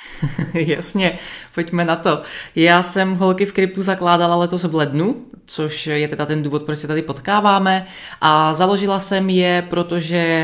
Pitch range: 155-185 Hz